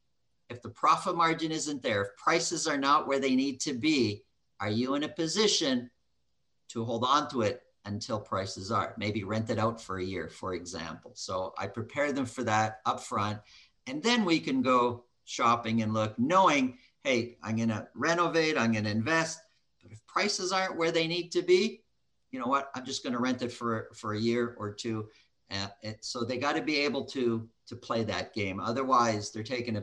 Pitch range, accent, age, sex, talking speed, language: 105-140 Hz, American, 50-69, male, 205 wpm, English